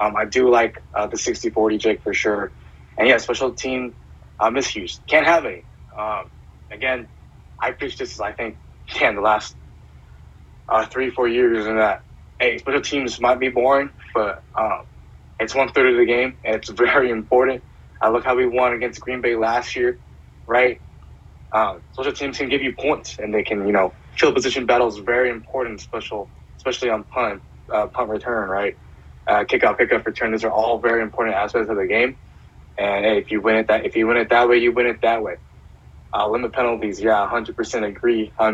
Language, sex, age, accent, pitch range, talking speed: English, male, 20-39, American, 100-125 Hz, 200 wpm